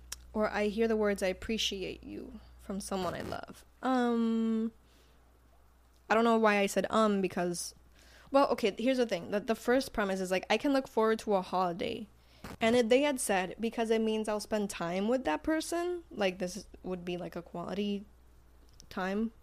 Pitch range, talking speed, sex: 190-255 Hz, 190 wpm, female